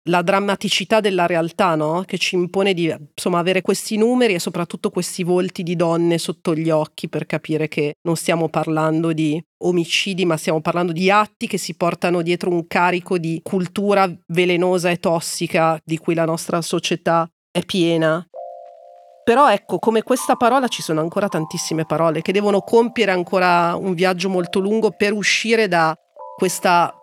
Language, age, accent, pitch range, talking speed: Italian, 40-59, native, 165-195 Hz, 165 wpm